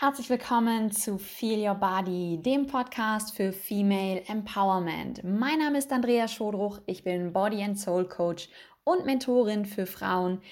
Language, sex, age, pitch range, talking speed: German, female, 20-39, 175-225 Hz, 150 wpm